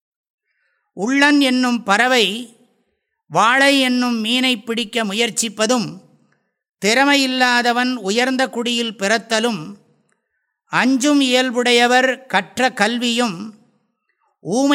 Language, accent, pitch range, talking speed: English, Indian, 205-250 Hz, 75 wpm